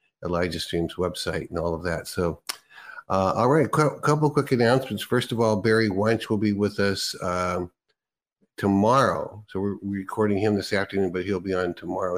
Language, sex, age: English, male, 50-69